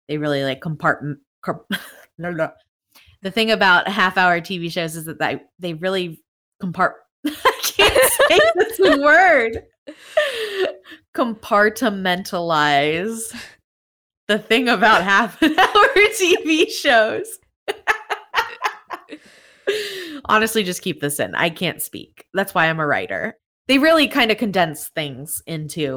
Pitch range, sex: 160-225 Hz, female